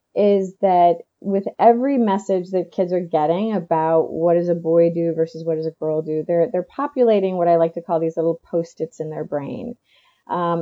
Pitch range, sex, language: 165-235 Hz, female, English